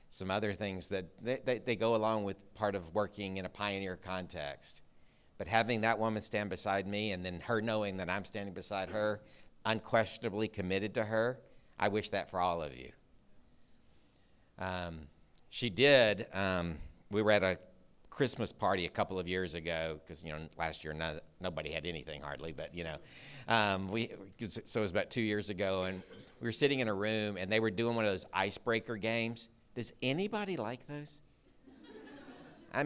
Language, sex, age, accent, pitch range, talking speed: English, male, 50-69, American, 95-120 Hz, 185 wpm